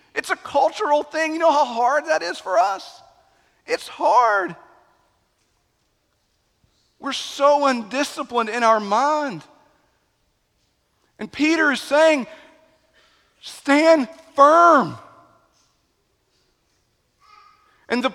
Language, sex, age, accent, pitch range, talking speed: English, male, 50-69, American, 200-280 Hz, 95 wpm